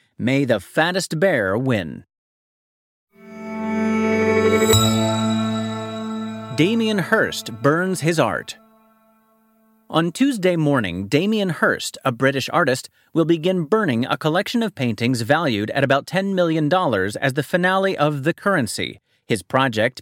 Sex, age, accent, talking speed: male, 30-49, American, 115 wpm